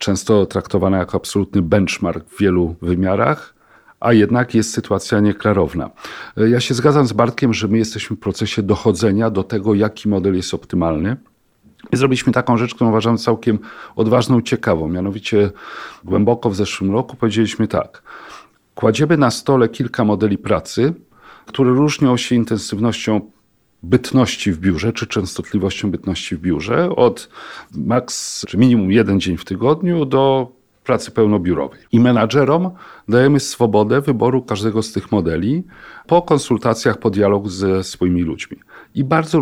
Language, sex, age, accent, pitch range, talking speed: Polish, male, 40-59, native, 100-125 Hz, 145 wpm